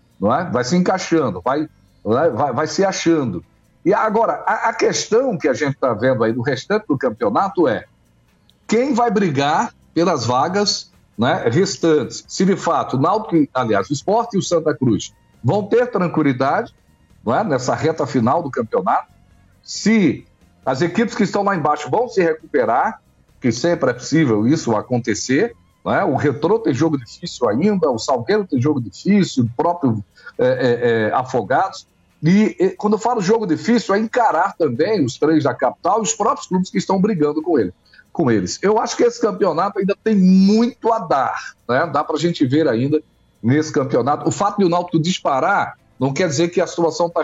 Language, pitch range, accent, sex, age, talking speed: Portuguese, 135-190 Hz, Brazilian, male, 60-79, 185 wpm